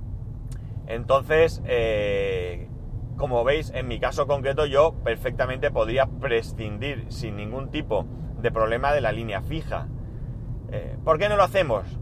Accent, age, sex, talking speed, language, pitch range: Spanish, 30-49, male, 135 wpm, Spanish, 115-135 Hz